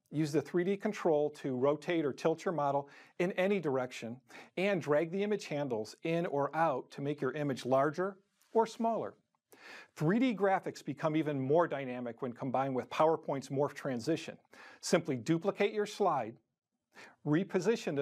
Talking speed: 150 wpm